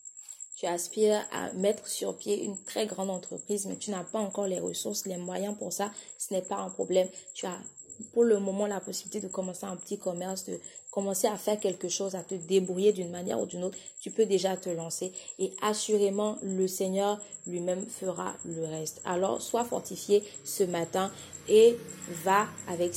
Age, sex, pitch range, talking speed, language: 30-49, female, 175-200 Hz, 190 wpm, French